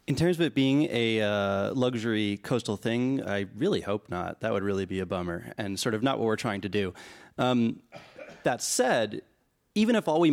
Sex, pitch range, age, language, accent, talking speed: male, 100-125 Hz, 30-49, English, American, 210 wpm